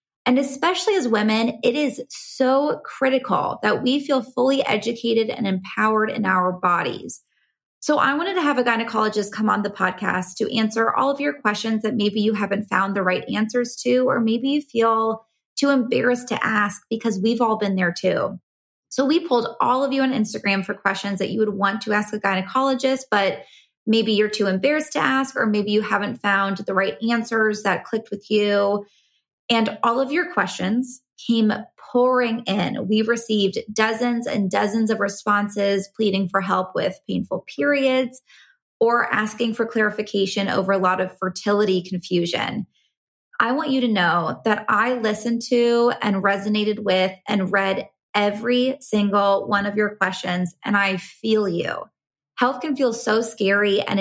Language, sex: English, female